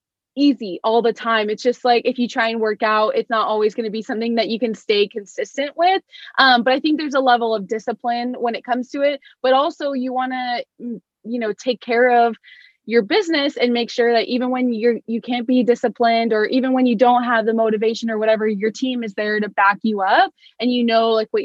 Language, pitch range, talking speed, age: English, 220-255 Hz, 240 wpm, 20-39